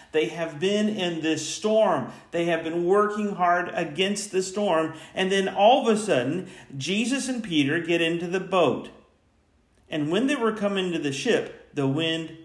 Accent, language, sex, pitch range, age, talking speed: American, English, male, 110-175 Hz, 50-69, 180 wpm